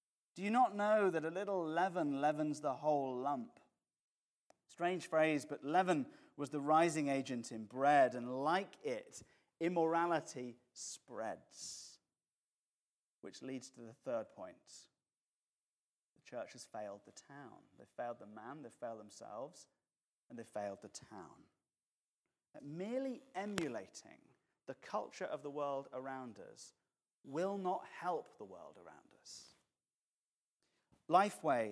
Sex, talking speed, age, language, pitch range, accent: male, 130 wpm, 30-49, English, 140-185 Hz, British